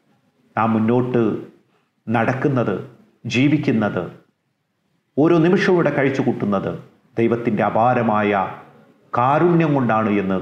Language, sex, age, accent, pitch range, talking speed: Malayalam, male, 40-59, native, 105-130 Hz, 80 wpm